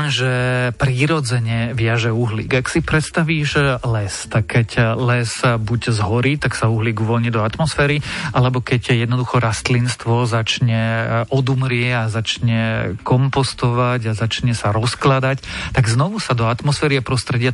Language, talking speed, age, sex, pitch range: Slovak, 135 wpm, 40-59, male, 115-135 Hz